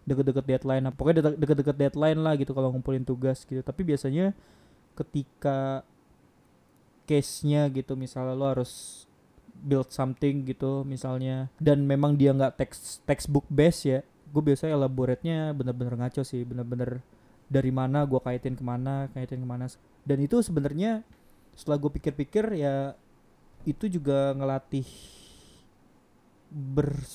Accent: native